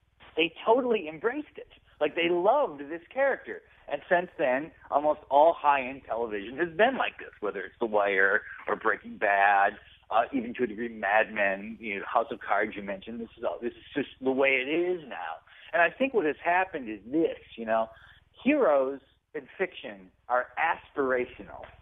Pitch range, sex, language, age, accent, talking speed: 125-175 Hz, male, English, 40-59, American, 185 wpm